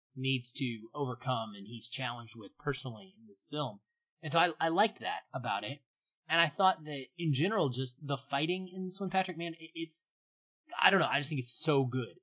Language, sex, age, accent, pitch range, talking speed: English, male, 20-39, American, 125-155 Hz, 210 wpm